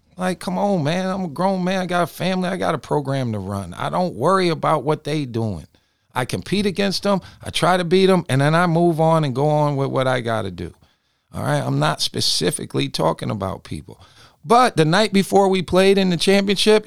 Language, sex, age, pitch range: English, male, 50-69, 110-180 Hz